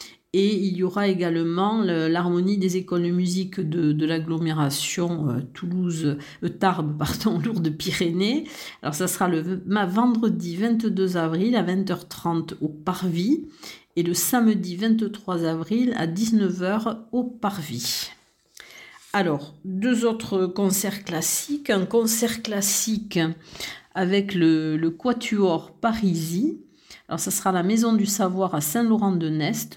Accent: French